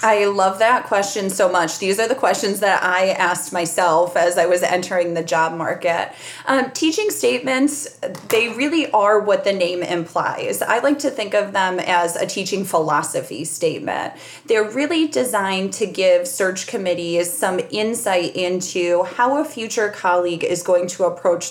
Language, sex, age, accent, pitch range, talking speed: English, female, 20-39, American, 175-205 Hz, 165 wpm